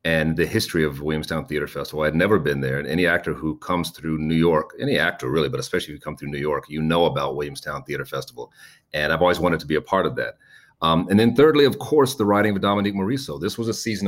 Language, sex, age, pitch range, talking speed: English, male, 40-59, 80-95 Hz, 265 wpm